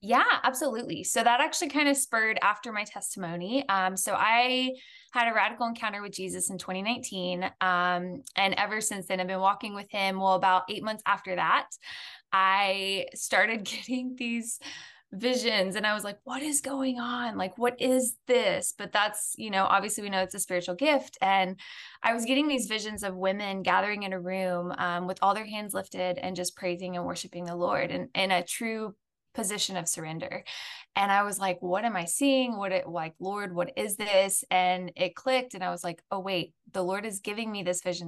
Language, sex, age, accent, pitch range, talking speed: English, female, 20-39, American, 185-235 Hz, 205 wpm